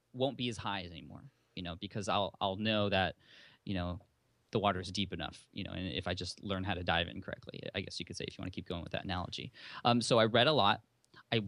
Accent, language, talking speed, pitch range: American, English, 275 wpm, 95-115 Hz